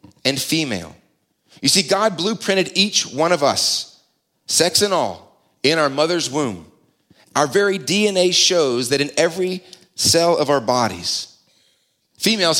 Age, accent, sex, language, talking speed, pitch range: 30-49, American, male, English, 140 wpm, 145-185 Hz